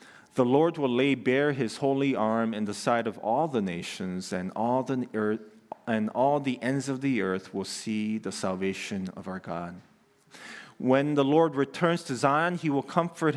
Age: 40-59